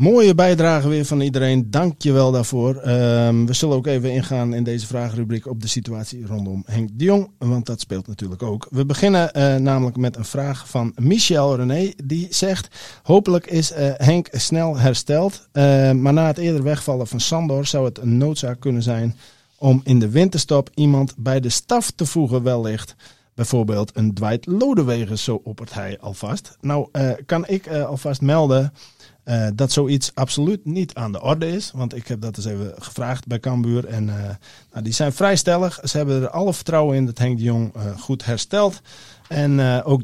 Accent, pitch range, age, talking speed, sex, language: Dutch, 120-145 Hz, 50-69, 190 wpm, male, English